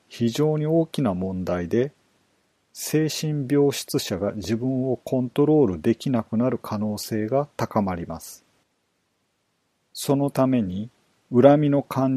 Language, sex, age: Japanese, male, 40-59